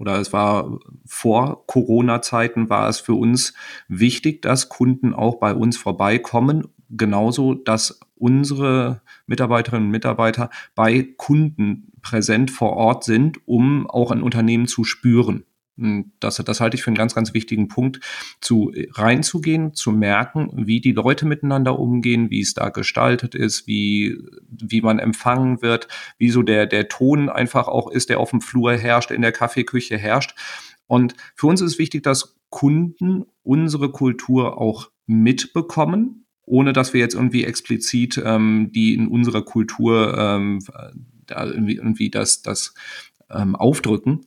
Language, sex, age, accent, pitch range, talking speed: German, male, 40-59, German, 110-130 Hz, 150 wpm